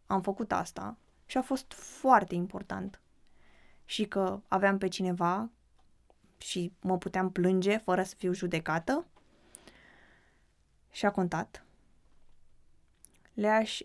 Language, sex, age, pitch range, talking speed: Romanian, female, 20-39, 170-210 Hz, 110 wpm